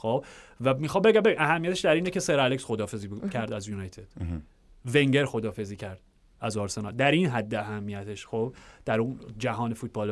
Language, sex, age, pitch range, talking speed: Persian, male, 30-49, 110-140 Hz, 160 wpm